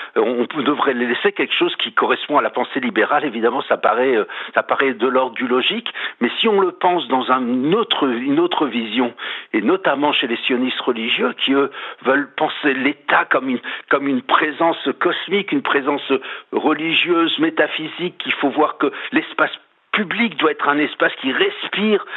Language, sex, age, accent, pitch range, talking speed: French, male, 60-79, French, 140-225 Hz, 175 wpm